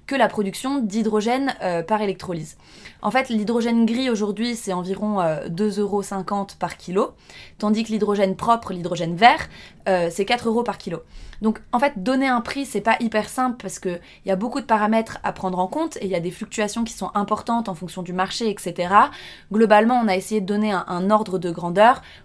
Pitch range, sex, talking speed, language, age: 185-235 Hz, female, 205 wpm, French, 20-39